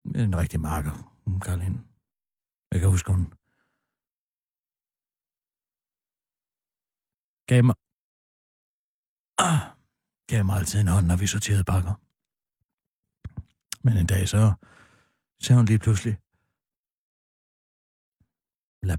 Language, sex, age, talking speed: Danish, male, 60-79, 100 wpm